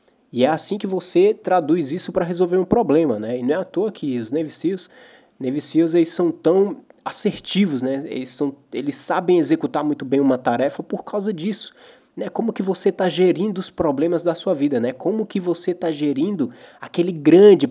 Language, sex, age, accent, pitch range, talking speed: Portuguese, male, 20-39, Brazilian, 145-200 Hz, 185 wpm